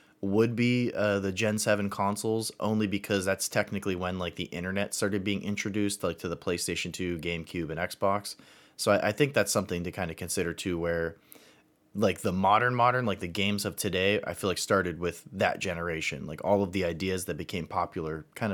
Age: 30-49